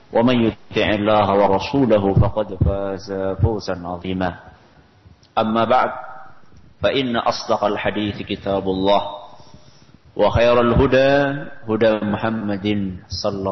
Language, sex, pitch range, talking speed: Indonesian, male, 100-115 Hz, 90 wpm